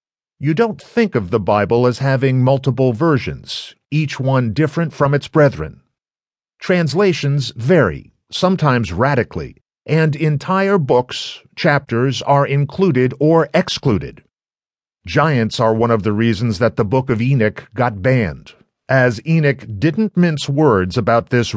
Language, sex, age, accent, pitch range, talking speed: English, male, 50-69, American, 120-155 Hz, 135 wpm